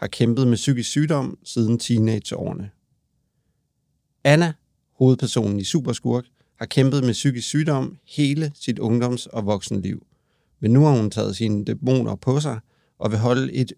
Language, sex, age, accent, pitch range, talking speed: English, male, 40-59, Danish, 110-140 Hz, 150 wpm